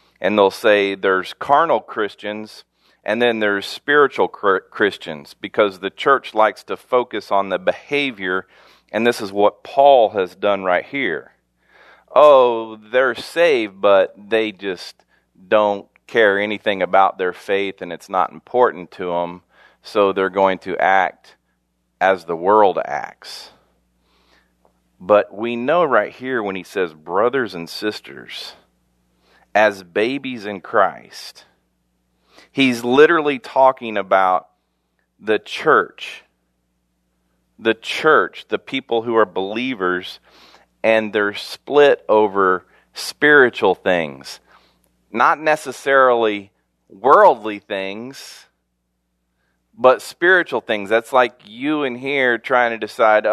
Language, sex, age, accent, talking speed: English, male, 40-59, American, 120 wpm